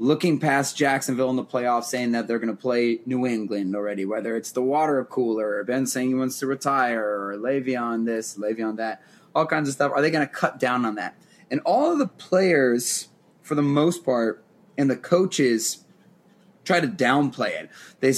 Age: 20-39